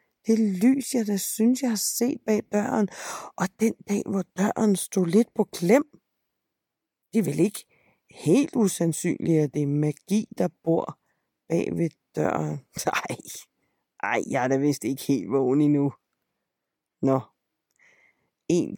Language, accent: Danish, native